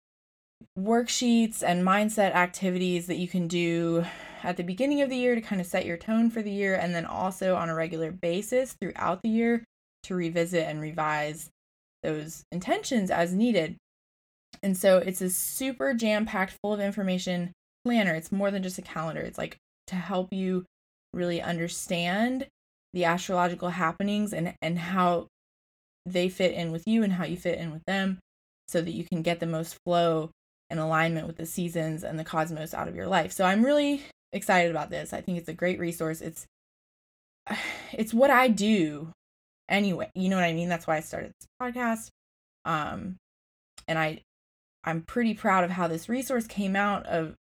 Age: 20-39